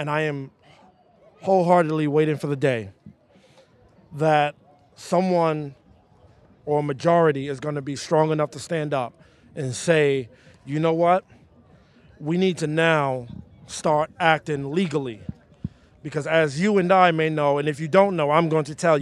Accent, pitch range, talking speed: American, 145-185 Hz, 155 wpm